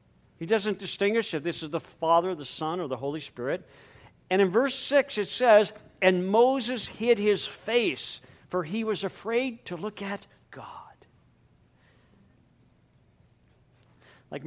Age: 50-69